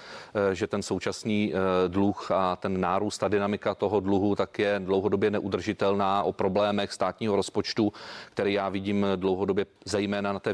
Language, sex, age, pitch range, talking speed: Czech, male, 30-49, 100-120 Hz, 150 wpm